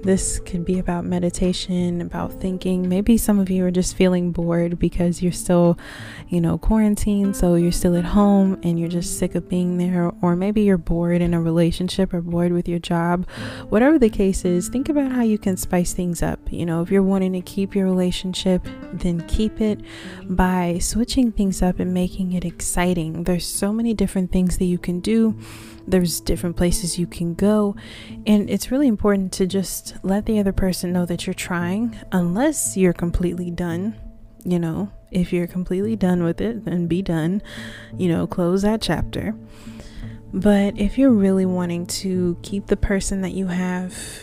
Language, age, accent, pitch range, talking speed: English, 20-39, American, 175-200 Hz, 185 wpm